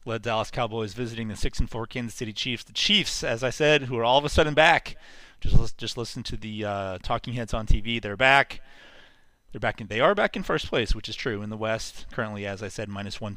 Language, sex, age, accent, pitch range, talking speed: English, male, 30-49, American, 105-130 Hz, 250 wpm